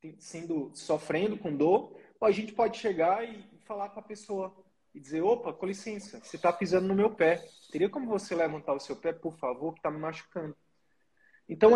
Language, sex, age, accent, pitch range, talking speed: Portuguese, male, 20-39, Brazilian, 175-230 Hz, 195 wpm